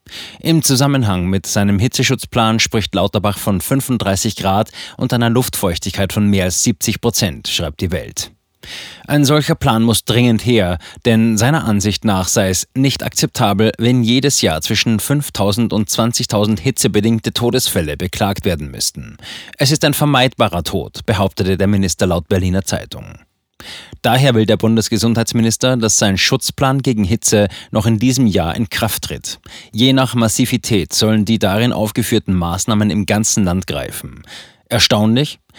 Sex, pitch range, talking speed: male, 100-120 Hz, 145 wpm